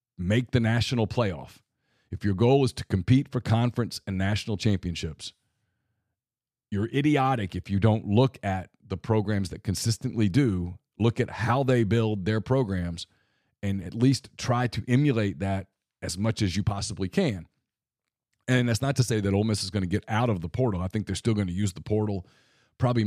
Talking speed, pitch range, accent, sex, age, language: 190 wpm, 95-120 Hz, American, male, 40-59, English